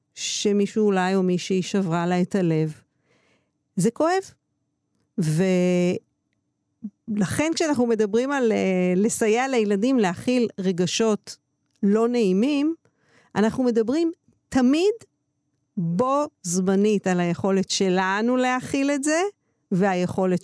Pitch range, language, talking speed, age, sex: 185-240 Hz, Hebrew, 95 wpm, 50-69, female